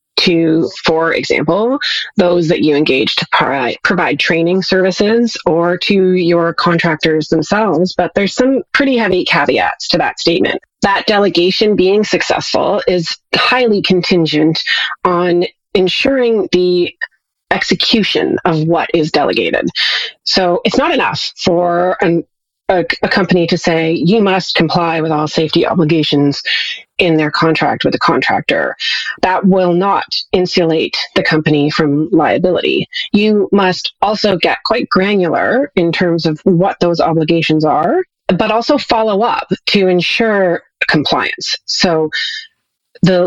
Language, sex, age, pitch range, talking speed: English, female, 30-49, 165-200 Hz, 130 wpm